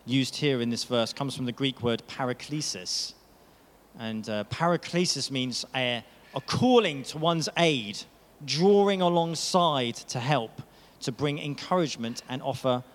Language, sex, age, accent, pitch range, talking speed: English, male, 40-59, British, 130-170 Hz, 140 wpm